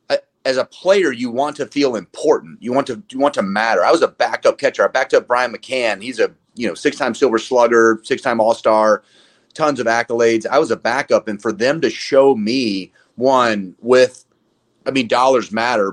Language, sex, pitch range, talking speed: English, male, 105-130 Hz, 200 wpm